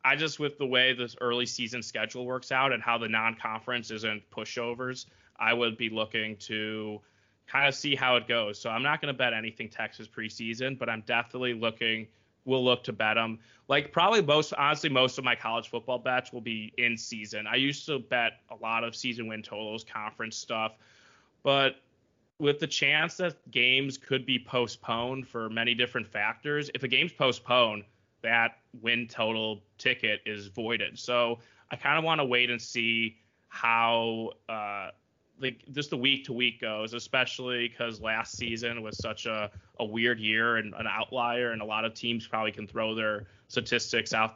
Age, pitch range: 20-39, 110-125 Hz